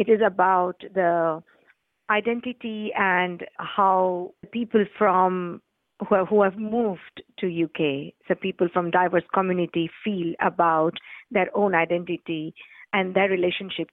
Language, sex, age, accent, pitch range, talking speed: English, female, 50-69, Indian, 175-210 Hz, 125 wpm